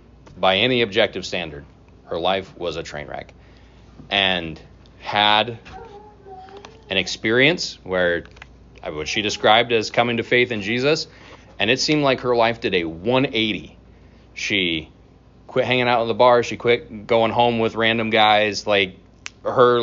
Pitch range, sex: 90-125 Hz, male